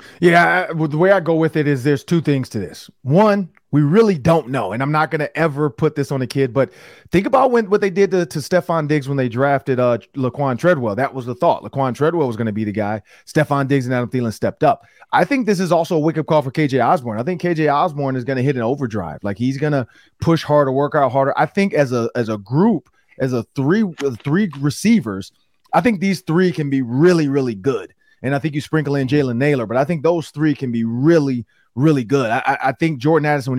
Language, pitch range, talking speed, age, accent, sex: English, 130-165 Hz, 245 wpm, 30-49, American, male